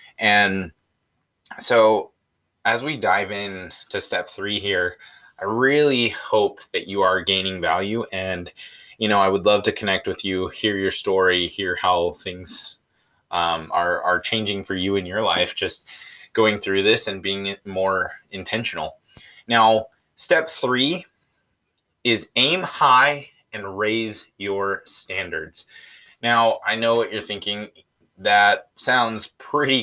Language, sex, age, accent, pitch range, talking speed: English, male, 20-39, American, 95-115 Hz, 140 wpm